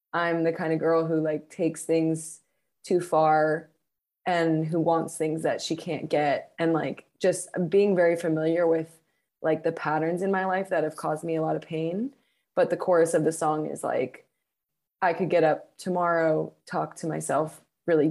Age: 20-39